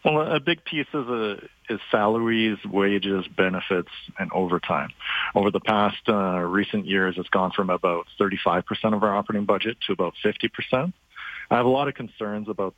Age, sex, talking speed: 40-59, male, 165 wpm